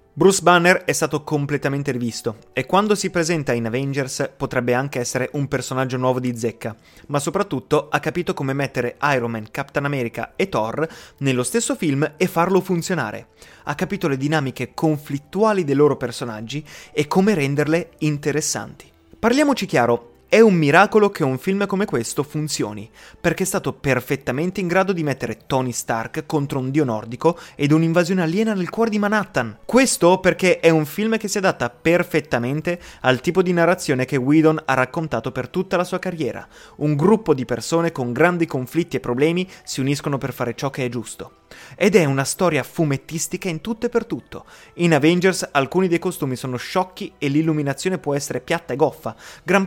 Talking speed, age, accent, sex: 175 wpm, 20-39, native, male